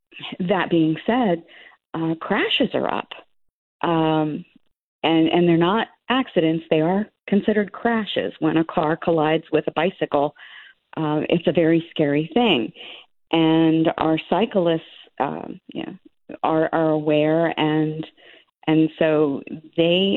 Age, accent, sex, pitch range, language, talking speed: 40-59, American, female, 155-175 Hz, English, 130 wpm